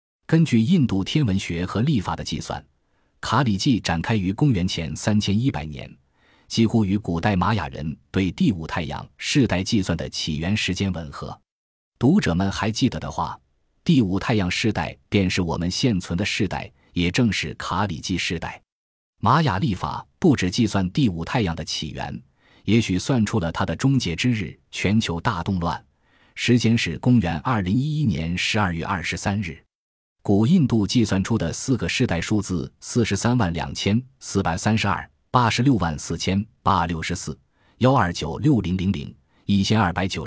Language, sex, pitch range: Chinese, male, 85-115 Hz